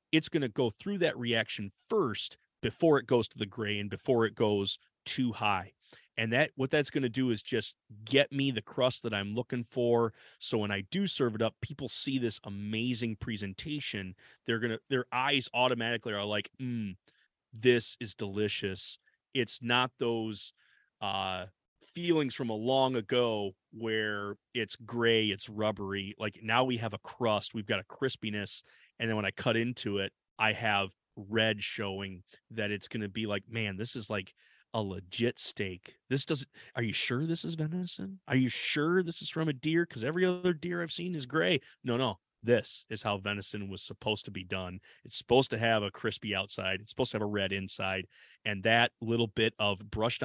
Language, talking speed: English, 195 wpm